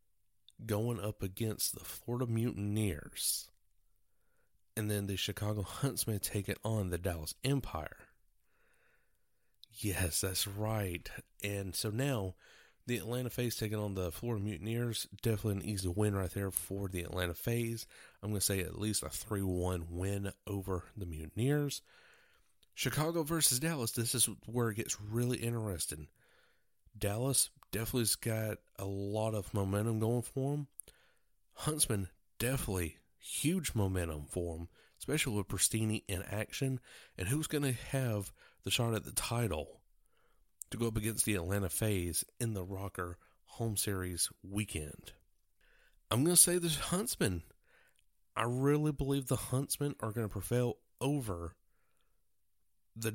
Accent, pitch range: American, 95-120 Hz